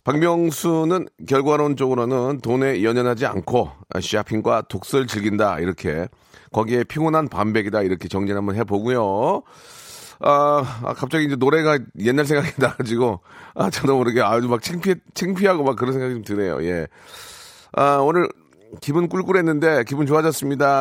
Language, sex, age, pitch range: Korean, male, 40-59, 110-150 Hz